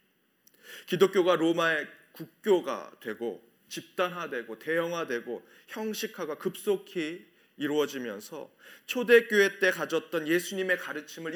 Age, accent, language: 30-49, native, Korean